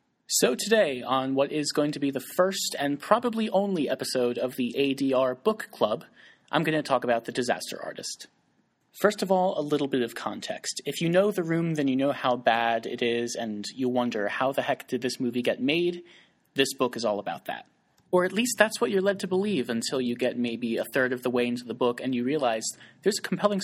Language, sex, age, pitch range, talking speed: English, male, 30-49, 120-165 Hz, 230 wpm